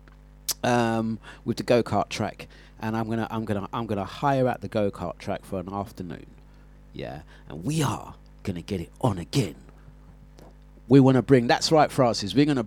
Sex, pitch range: male, 100-145 Hz